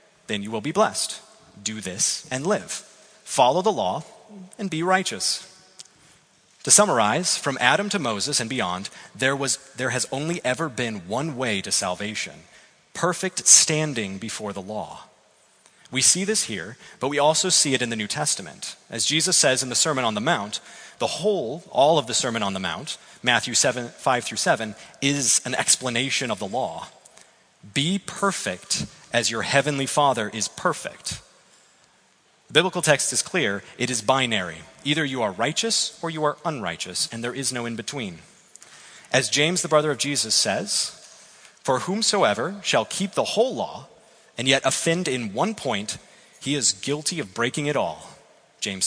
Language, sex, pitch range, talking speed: English, male, 120-185 Hz, 170 wpm